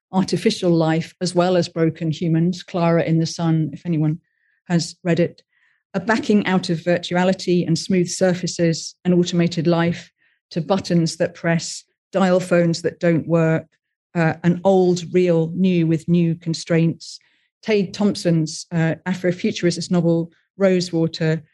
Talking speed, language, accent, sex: 140 wpm, English, British, female